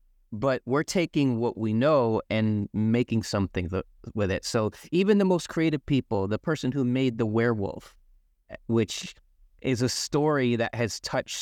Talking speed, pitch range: 160 wpm, 105-140 Hz